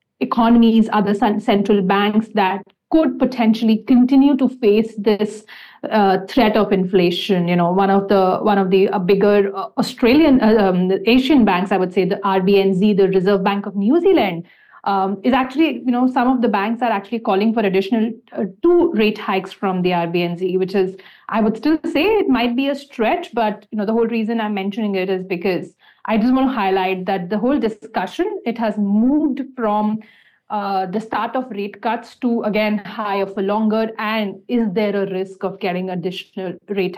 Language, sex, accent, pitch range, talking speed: English, female, Indian, 195-235 Hz, 195 wpm